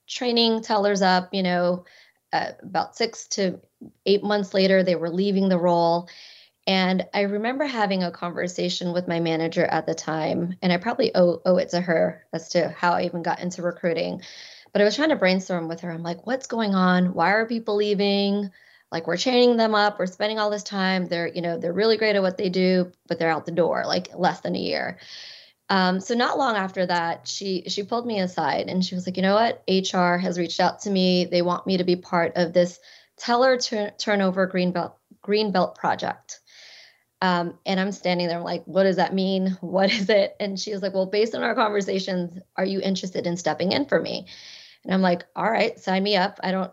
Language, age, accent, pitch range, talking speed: English, 20-39, American, 180-205 Hz, 220 wpm